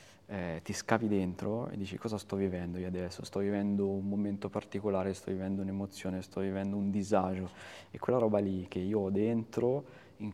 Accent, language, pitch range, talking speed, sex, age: native, Italian, 95-100 Hz, 185 wpm, male, 20-39